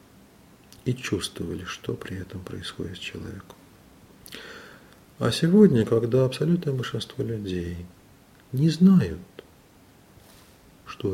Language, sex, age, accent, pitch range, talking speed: Russian, male, 40-59, native, 90-140 Hz, 90 wpm